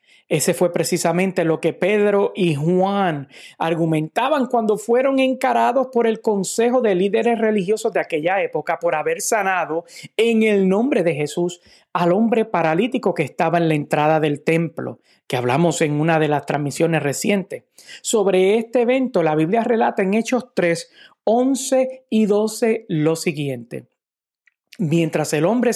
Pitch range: 165-230 Hz